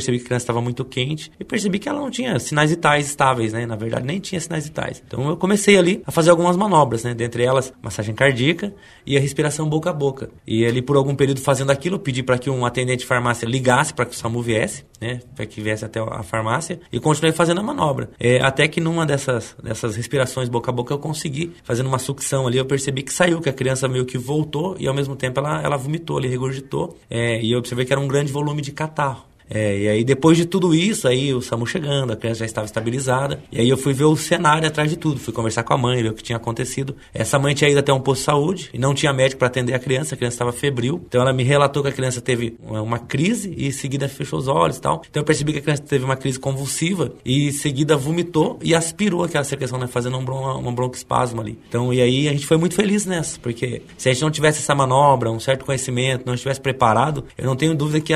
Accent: Brazilian